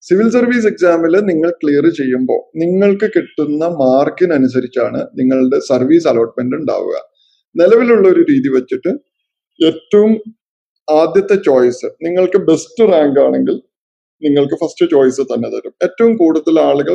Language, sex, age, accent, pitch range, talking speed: Malayalam, male, 20-39, native, 145-210 Hz, 115 wpm